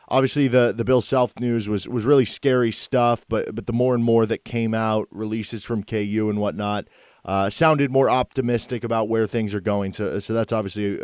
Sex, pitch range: male, 105-125 Hz